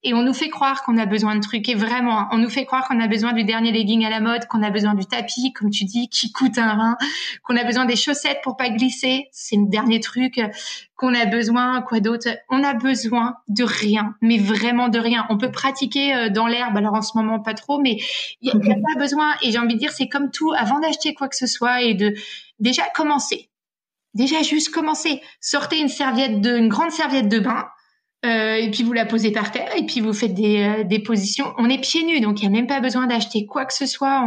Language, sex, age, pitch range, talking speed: French, female, 20-39, 220-275 Hz, 250 wpm